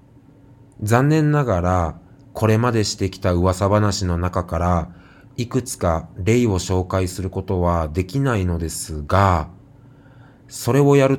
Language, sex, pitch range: Japanese, male, 90-130 Hz